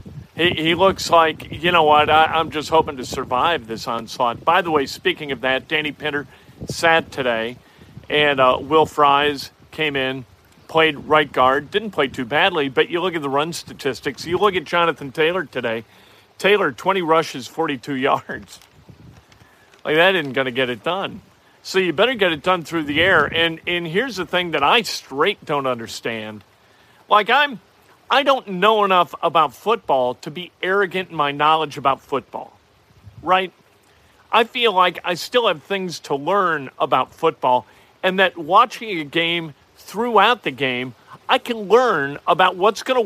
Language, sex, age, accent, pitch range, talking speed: English, male, 50-69, American, 140-200 Hz, 175 wpm